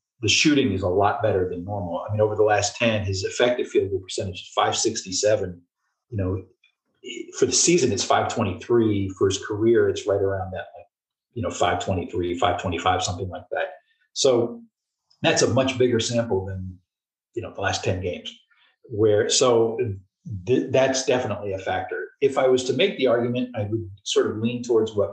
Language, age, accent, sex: English, 40-59, American, male